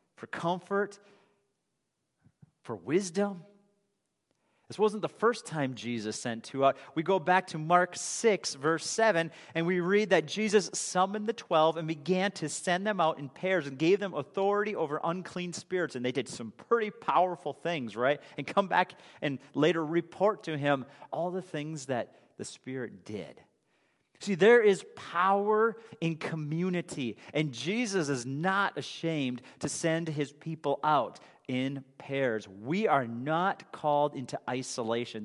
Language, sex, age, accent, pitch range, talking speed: English, male, 40-59, American, 150-195 Hz, 155 wpm